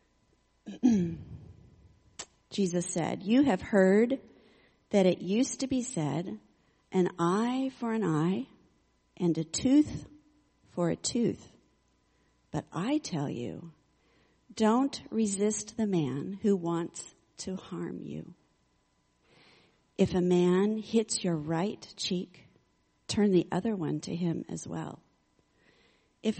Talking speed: 115 wpm